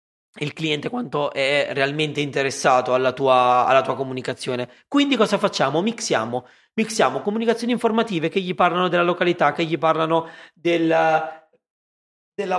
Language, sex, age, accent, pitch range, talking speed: Italian, male, 30-49, native, 150-200 Hz, 135 wpm